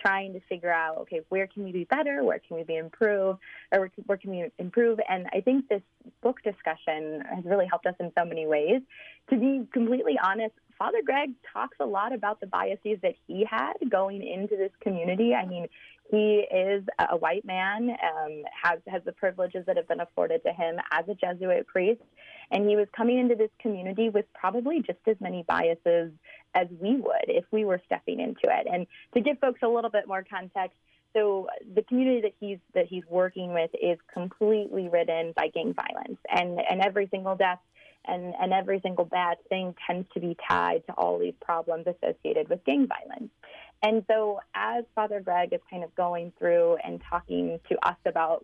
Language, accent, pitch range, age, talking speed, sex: English, American, 175-220 Hz, 20-39, 195 wpm, female